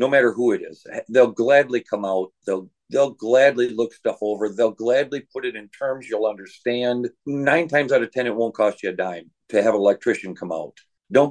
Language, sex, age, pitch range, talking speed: English, male, 50-69, 110-140 Hz, 220 wpm